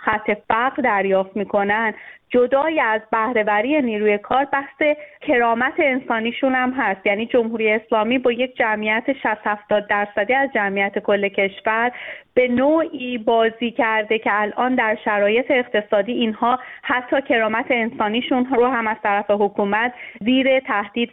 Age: 30-49